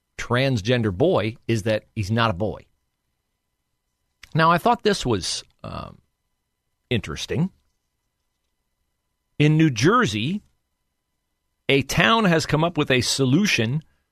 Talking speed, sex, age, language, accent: 110 wpm, male, 40-59, English, American